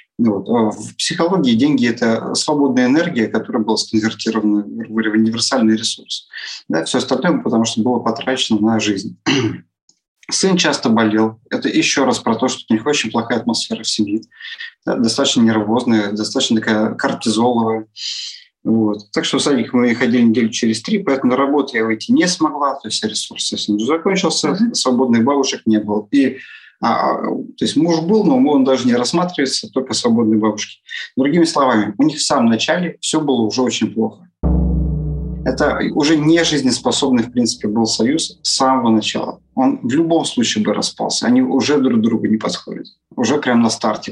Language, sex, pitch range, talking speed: Russian, male, 110-155 Hz, 165 wpm